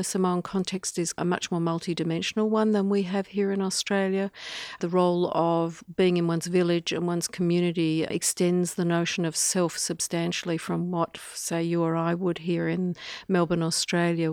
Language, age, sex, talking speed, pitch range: English, 50-69, female, 175 wpm, 165-185 Hz